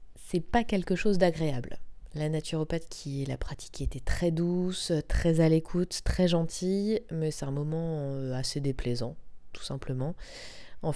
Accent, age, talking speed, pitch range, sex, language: French, 20-39, 150 wpm, 150-180 Hz, female, French